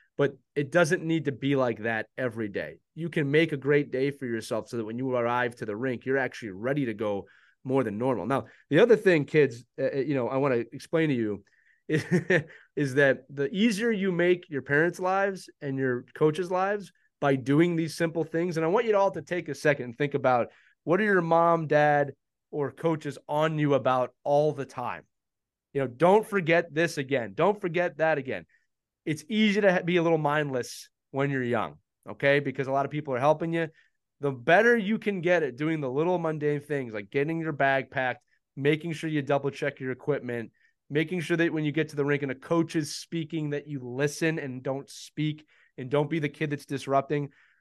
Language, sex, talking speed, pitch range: English, male, 215 wpm, 135-165 Hz